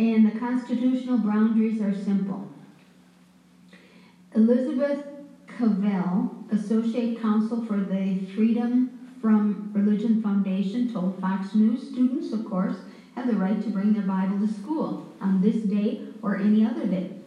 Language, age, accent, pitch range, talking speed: English, 50-69, American, 195-230 Hz, 130 wpm